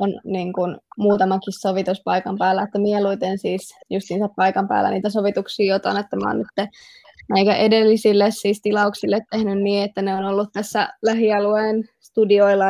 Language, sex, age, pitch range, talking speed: Finnish, female, 20-39, 195-210 Hz, 155 wpm